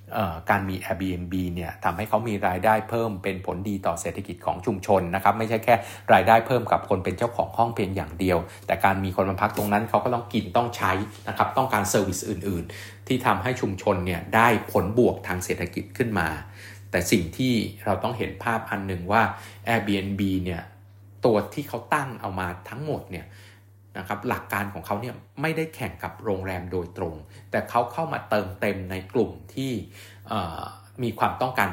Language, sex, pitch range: Thai, male, 95-110 Hz